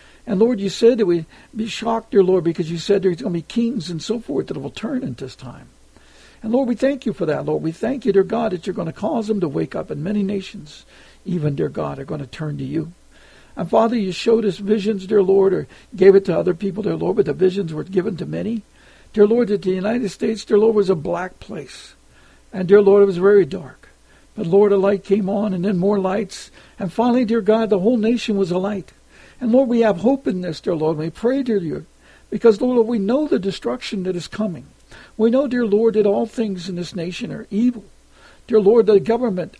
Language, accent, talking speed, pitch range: English, American, 245 wpm, 175-220 Hz